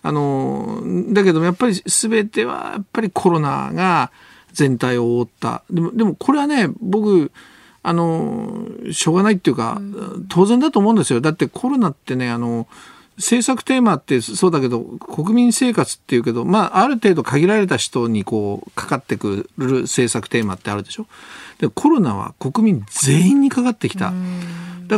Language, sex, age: Japanese, male, 50-69